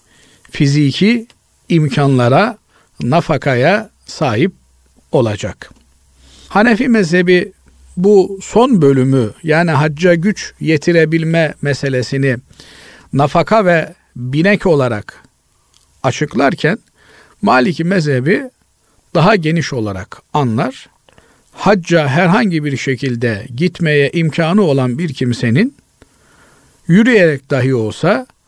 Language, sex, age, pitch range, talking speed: Turkish, male, 50-69, 130-180 Hz, 80 wpm